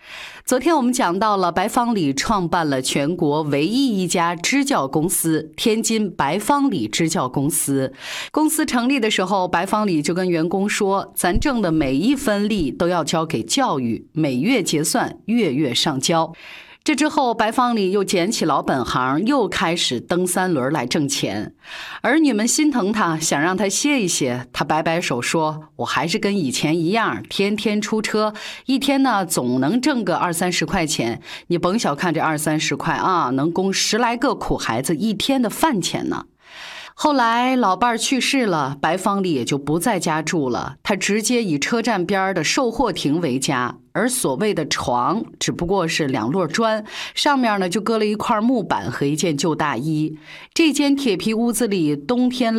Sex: female